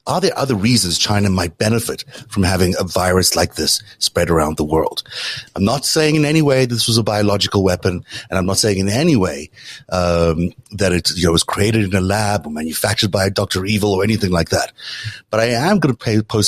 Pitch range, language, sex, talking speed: 90-110 Hz, English, male, 225 wpm